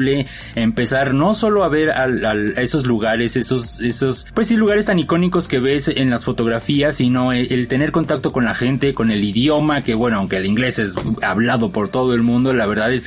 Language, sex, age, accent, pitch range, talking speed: Spanish, male, 30-49, Mexican, 115-155 Hz, 215 wpm